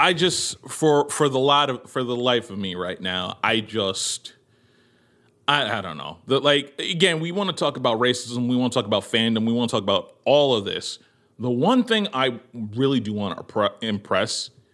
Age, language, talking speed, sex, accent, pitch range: 30-49, English, 200 wpm, male, American, 110-150 Hz